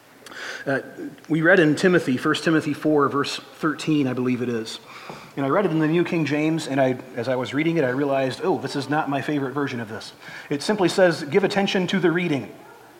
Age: 40-59